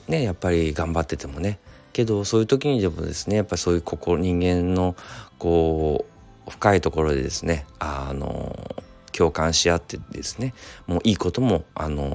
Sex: male